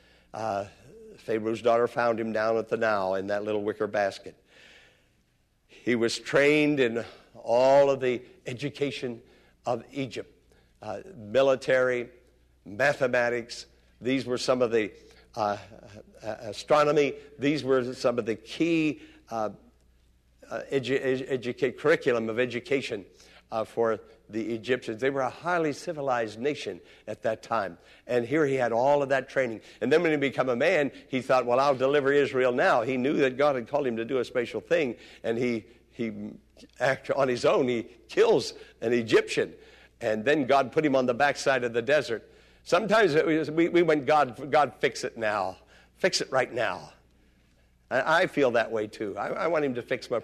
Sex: male